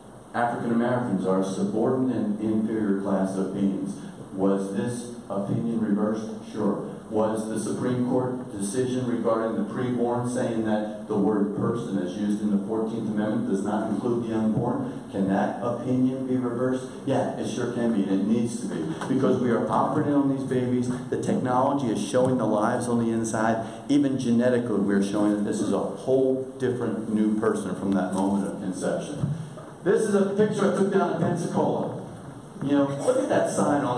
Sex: male